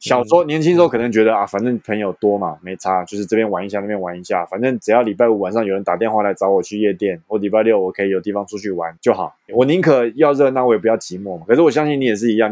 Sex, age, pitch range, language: male, 20-39, 100-125 Hz, Chinese